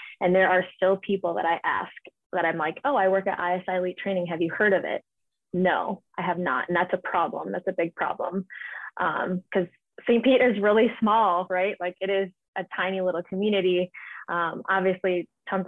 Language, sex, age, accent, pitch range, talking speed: English, female, 20-39, American, 175-195 Hz, 205 wpm